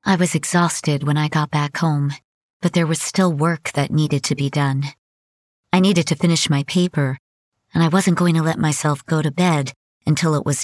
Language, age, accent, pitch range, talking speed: English, 40-59, American, 140-180 Hz, 210 wpm